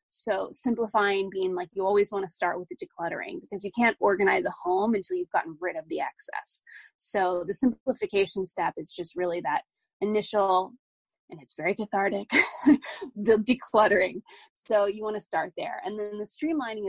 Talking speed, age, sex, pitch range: 180 wpm, 20-39, female, 195-265 Hz